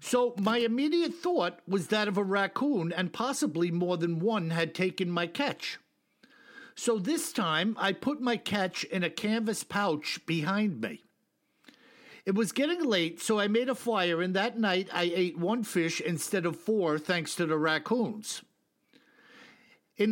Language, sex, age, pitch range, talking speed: English, male, 60-79, 180-240 Hz, 165 wpm